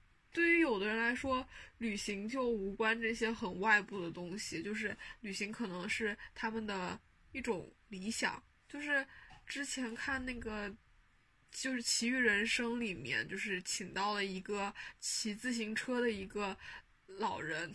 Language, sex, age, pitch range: Chinese, female, 10-29, 200-235 Hz